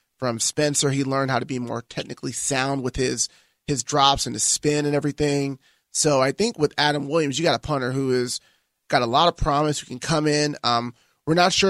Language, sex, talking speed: English, male, 225 wpm